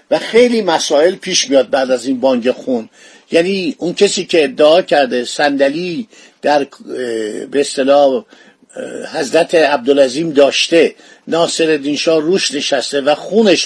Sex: male